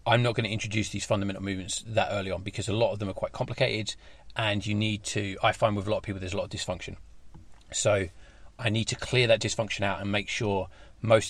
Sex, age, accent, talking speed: male, 30-49, British, 250 wpm